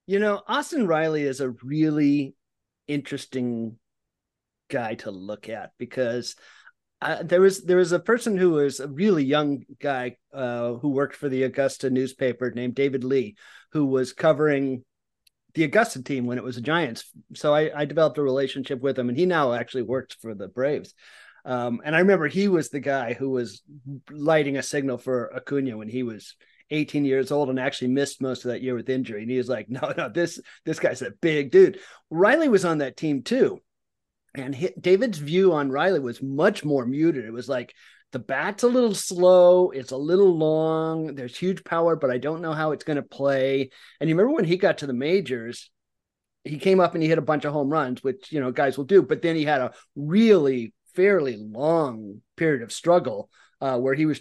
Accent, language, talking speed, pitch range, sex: American, English, 205 wpm, 130-165 Hz, male